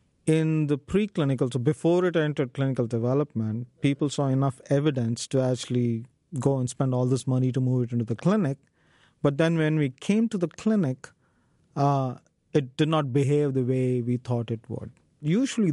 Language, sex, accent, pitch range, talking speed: English, male, Indian, 130-160 Hz, 180 wpm